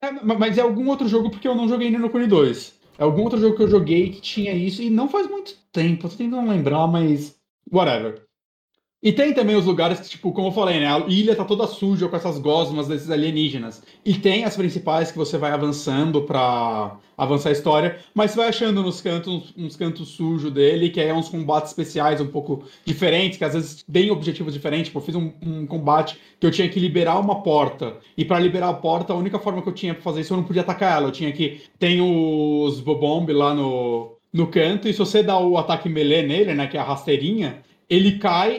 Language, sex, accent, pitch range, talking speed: Portuguese, male, Brazilian, 155-205 Hz, 230 wpm